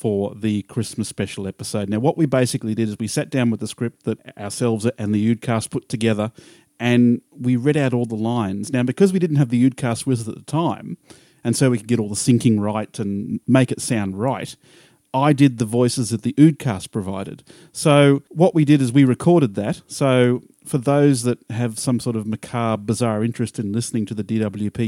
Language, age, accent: English, 30-49, Australian